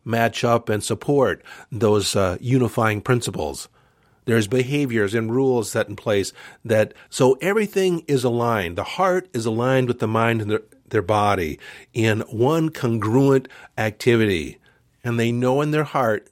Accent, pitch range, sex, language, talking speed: American, 110-140 Hz, male, English, 150 wpm